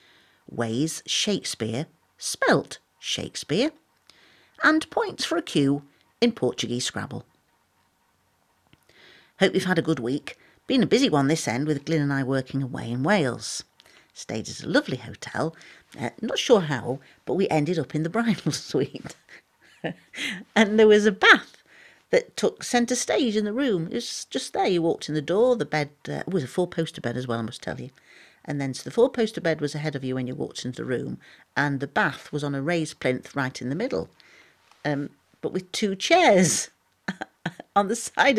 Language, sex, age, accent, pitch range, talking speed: English, female, 50-69, British, 135-205 Hz, 185 wpm